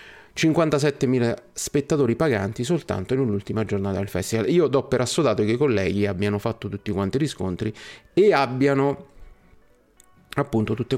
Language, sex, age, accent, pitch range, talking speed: Italian, male, 30-49, native, 110-140 Hz, 135 wpm